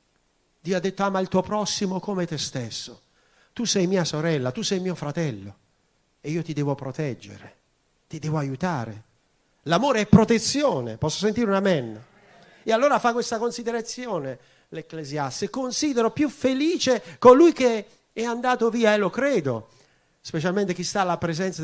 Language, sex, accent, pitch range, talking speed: Italian, male, native, 120-185 Hz, 155 wpm